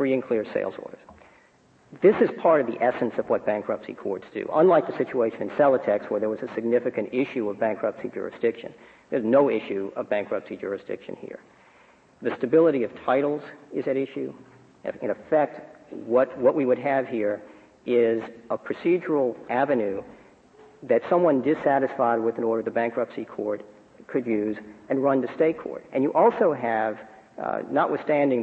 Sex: male